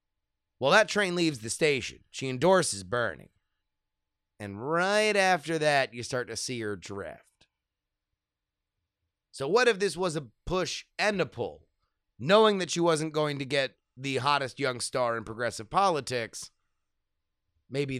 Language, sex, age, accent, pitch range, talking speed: English, male, 30-49, American, 105-150 Hz, 145 wpm